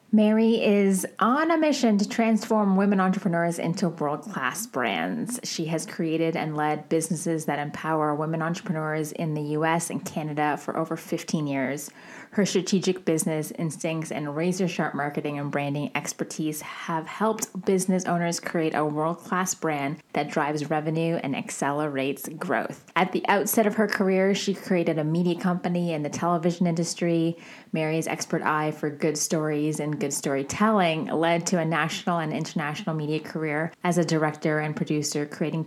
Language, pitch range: English, 155-190 Hz